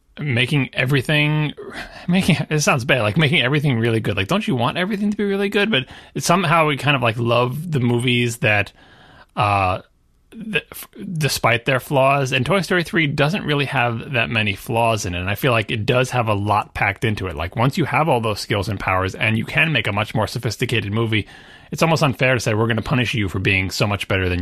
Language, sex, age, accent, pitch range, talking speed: English, male, 30-49, American, 105-145 Hz, 225 wpm